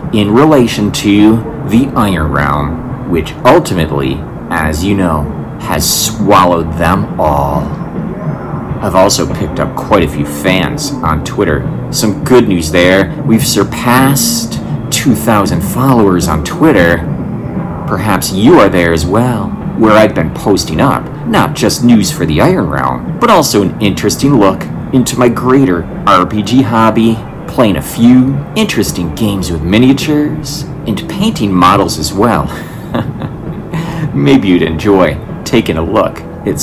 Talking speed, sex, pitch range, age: 135 wpm, male, 75-125 Hz, 30-49